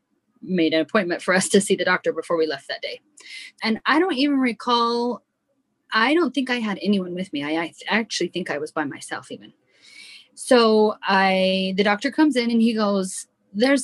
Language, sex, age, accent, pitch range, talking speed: English, female, 20-39, American, 180-245 Hz, 200 wpm